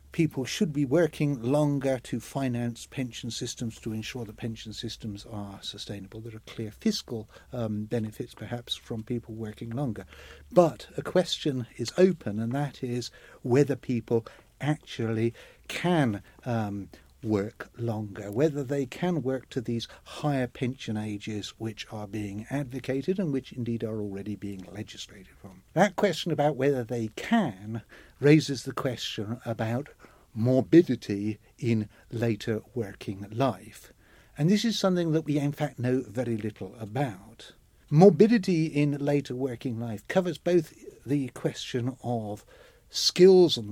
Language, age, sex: English, 60-79, male